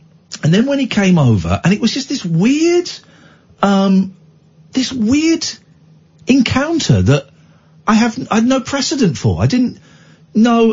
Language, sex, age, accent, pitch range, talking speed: English, male, 40-59, British, 110-175 Hz, 150 wpm